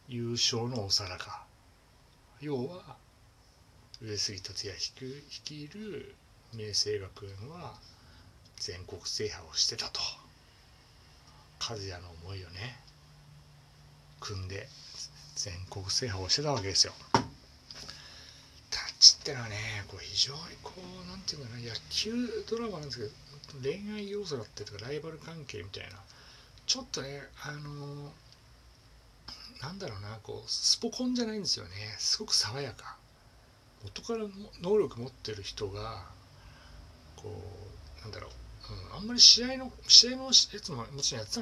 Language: Japanese